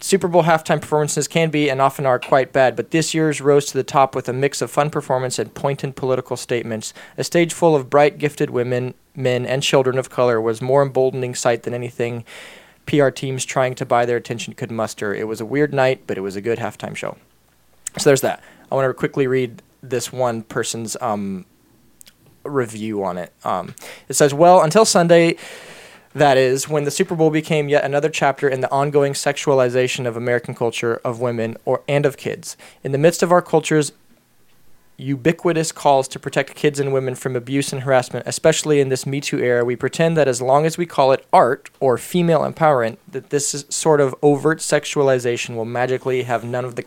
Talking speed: 205 wpm